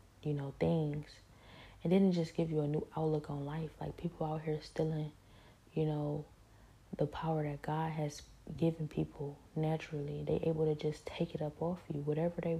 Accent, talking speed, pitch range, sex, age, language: American, 185 wpm, 145-165 Hz, female, 20-39, English